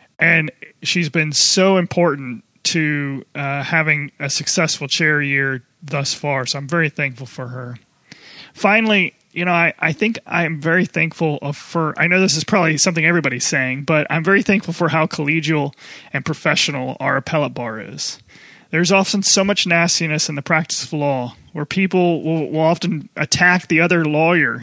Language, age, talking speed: English, 30-49, 170 wpm